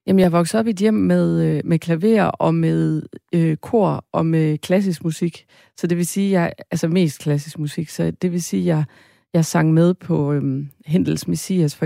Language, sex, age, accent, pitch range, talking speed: Danish, female, 30-49, native, 160-185 Hz, 200 wpm